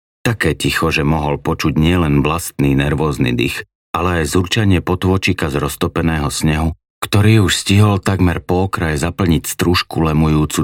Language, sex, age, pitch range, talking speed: Slovak, male, 40-59, 70-90 Hz, 140 wpm